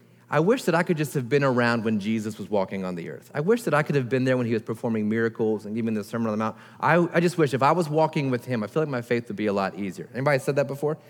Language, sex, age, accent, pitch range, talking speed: English, male, 30-49, American, 120-155 Hz, 325 wpm